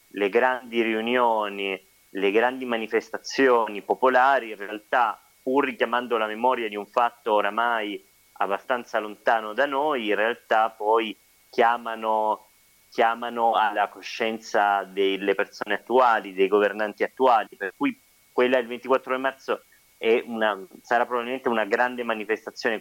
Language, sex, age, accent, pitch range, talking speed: Italian, male, 30-49, native, 100-120 Hz, 120 wpm